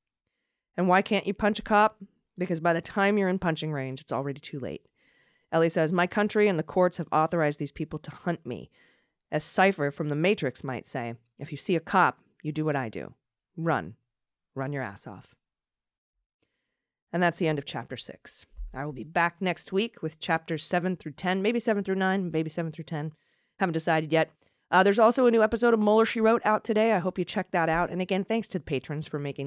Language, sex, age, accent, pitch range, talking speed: English, female, 30-49, American, 145-190 Hz, 225 wpm